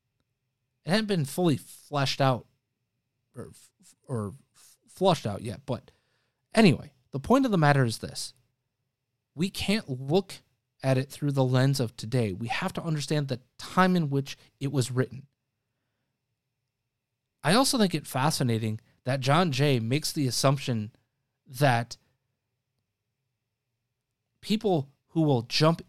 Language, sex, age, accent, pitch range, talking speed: English, male, 30-49, American, 125-155 Hz, 130 wpm